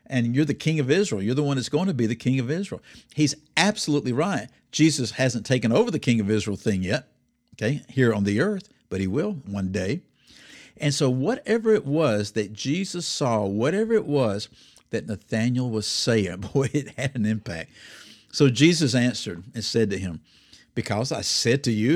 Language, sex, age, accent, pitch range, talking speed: English, male, 60-79, American, 105-145 Hz, 195 wpm